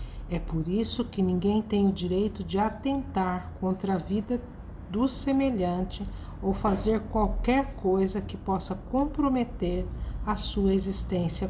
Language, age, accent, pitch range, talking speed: Portuguese, 60-79, Brazilian, 180-225 Hz, 130 wpm